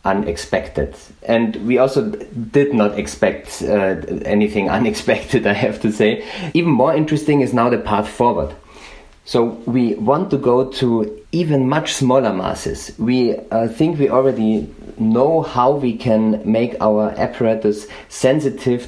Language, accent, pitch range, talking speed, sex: English, German, 105-135 Hz, 145 wpm, male